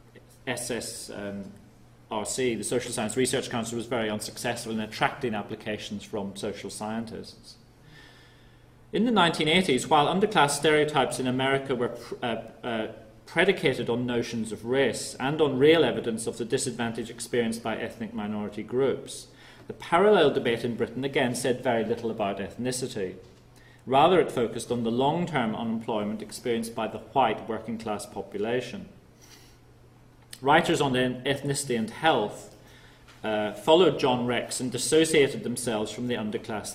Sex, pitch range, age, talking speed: male, 105-125 Hz, 40-59, 135 wpm